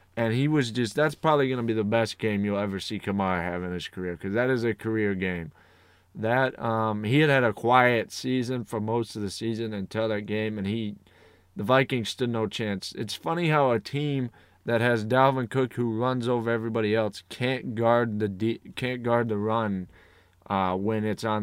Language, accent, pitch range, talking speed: English, American, 95-120 Hz, 205 wpm